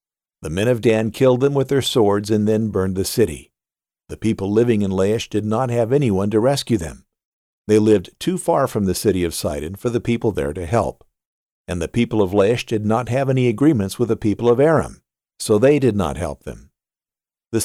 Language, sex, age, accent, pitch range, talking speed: English, male, 50-69, American, 95-120 Hz, 215 wpm